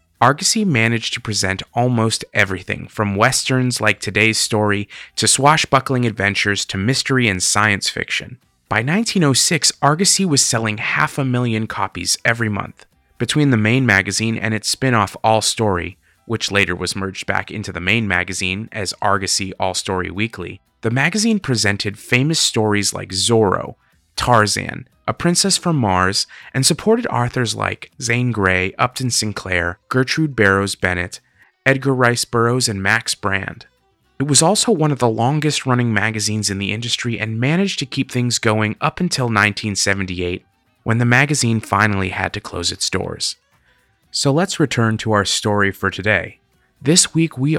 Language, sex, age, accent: English, male, 30-49, American